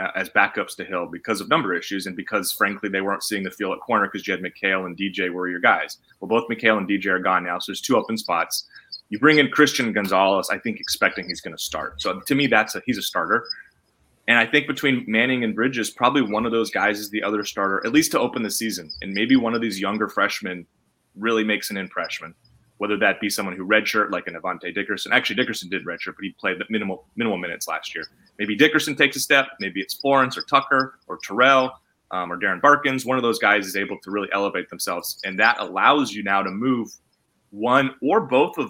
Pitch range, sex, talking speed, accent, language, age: 100-130 Hz, male, 235 wpm, American, English, 30-49